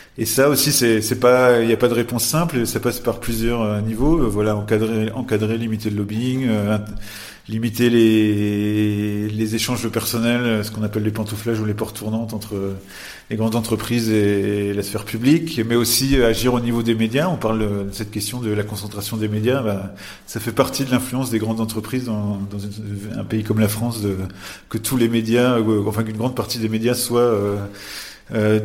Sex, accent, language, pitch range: male, French, French, 105-120 Hz